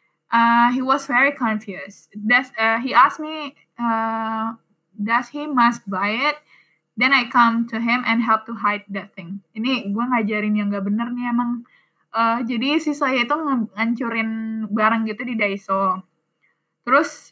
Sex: female